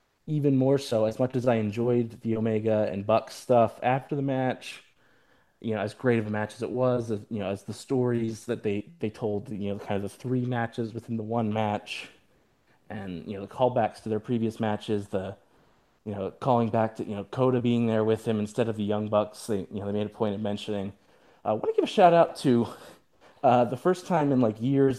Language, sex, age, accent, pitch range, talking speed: English, male, 20-39, American, 105-130 Hz, 235 wpm